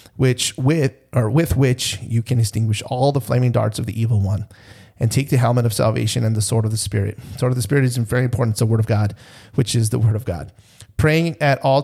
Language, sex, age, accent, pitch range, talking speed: English, male, 30-49, American, 115-135 Hz, 250 wpm